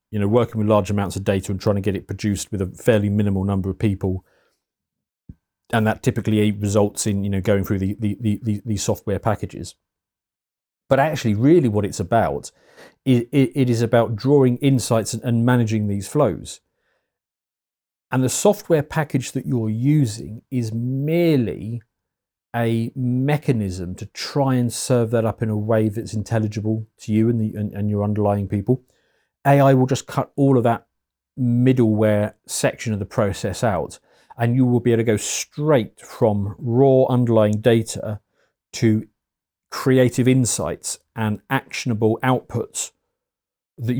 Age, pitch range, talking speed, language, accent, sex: 40-59, 105-130 Hz, 160 wpm, English, British, male